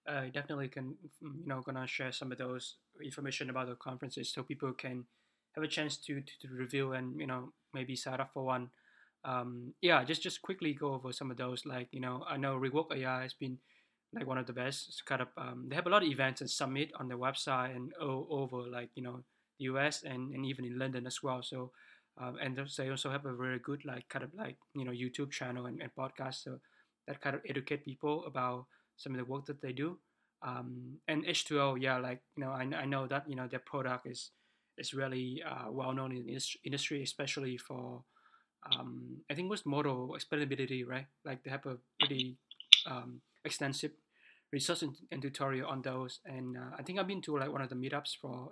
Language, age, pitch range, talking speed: English, 20-39, 125-140 Hz, 225 wpm